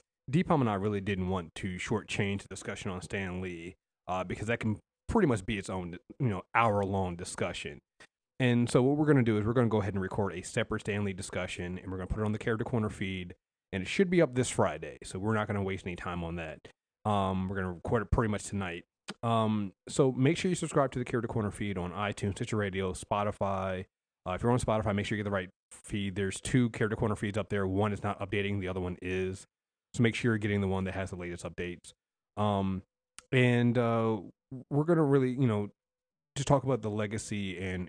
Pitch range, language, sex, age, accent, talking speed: 95-120 Hz, English, male, 30-49, American, 240 wpm